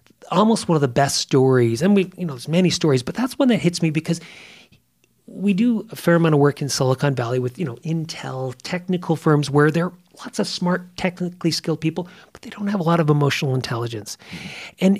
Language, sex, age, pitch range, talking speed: English, male, 40-59, 145-190 Hz, 220 wpm